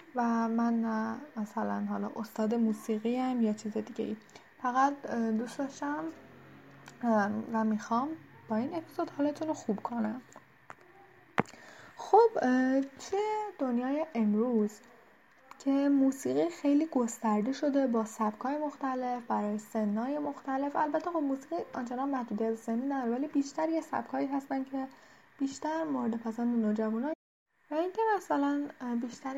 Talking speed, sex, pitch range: 120 wpm, female, 225-295 Hz